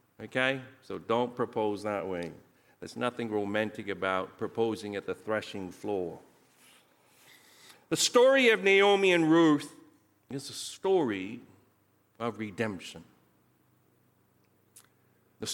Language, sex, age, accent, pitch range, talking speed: English, male, 50-69, American, 110-175 Hz, 105 wpm